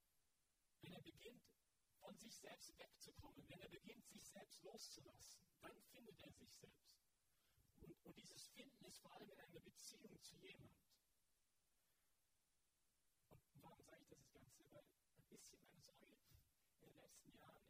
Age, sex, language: 40-59, male, English